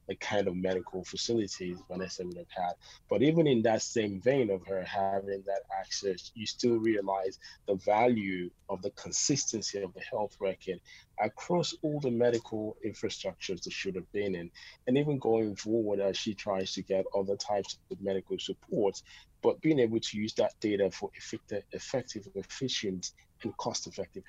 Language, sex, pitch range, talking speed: English, male, 95-115 Hz, 170 wpm